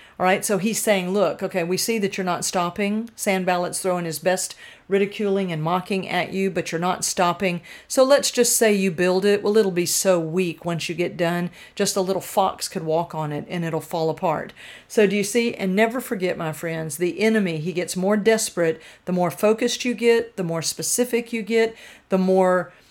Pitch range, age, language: 175-215 Hz, 50-69, English